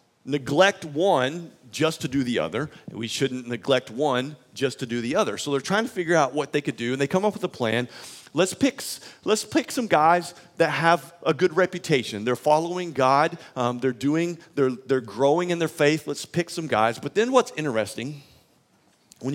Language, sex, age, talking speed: English, male, 40-59, 200 wpm